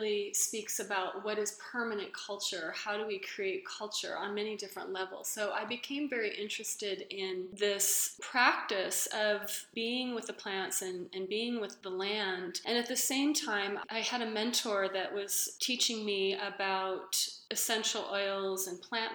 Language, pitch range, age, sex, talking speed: English, 195-230 Hz, 30-49, female, 165 wpm